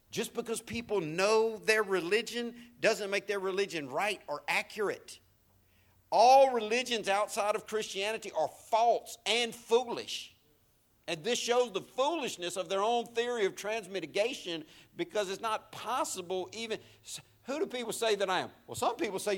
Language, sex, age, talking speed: English, male, 50-69, 150 wpm